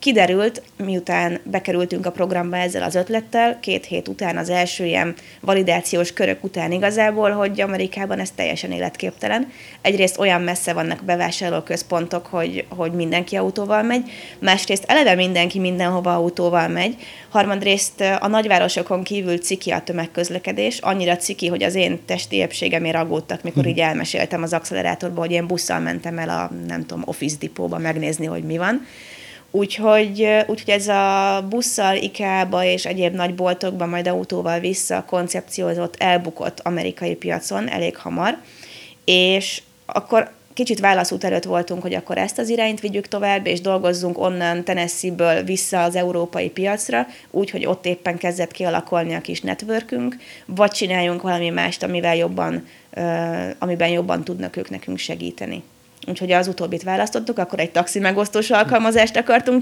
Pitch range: 170-200 Hz